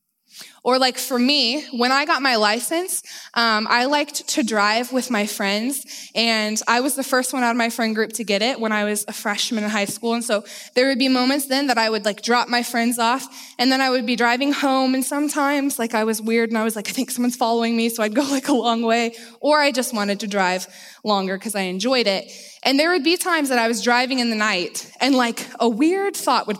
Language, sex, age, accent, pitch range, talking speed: English, female, 20-39, American, 210-265 Hz, 255 wpm